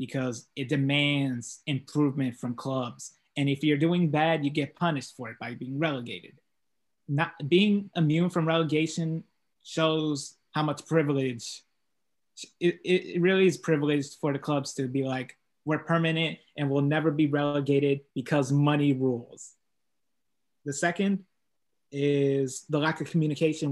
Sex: male